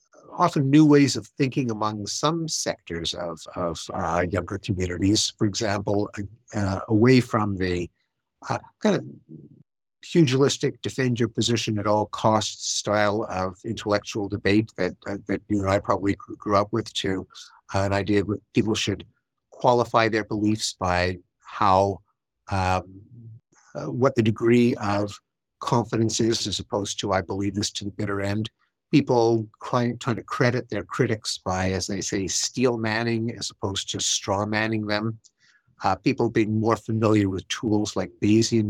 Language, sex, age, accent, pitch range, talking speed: English, male, 60-79, American, 95-115 Hz, 160 wpm